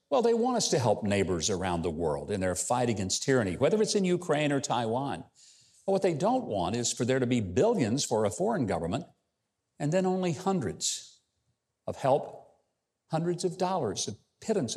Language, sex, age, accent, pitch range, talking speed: English, male, 50-69, American, 115-175 Hz, 190 wpm